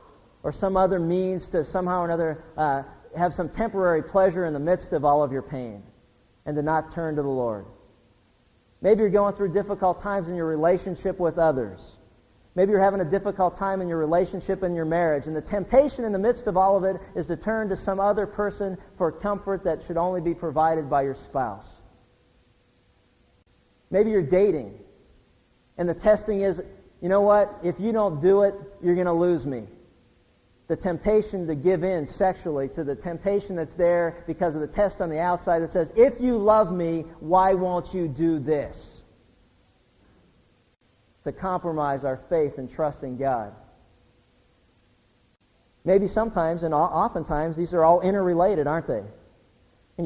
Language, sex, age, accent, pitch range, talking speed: English, male, 50-69, American, 150-190 Hz, 175 wpm